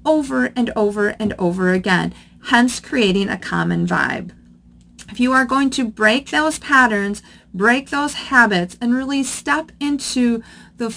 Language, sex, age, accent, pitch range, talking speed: English, female, 40-59, American, 195-255 Hz, 150 wpm